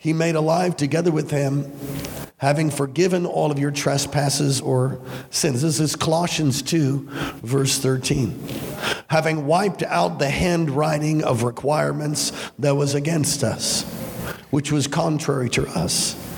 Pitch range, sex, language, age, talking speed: 140-160 Hz, male, English, 50-69, 130 wpm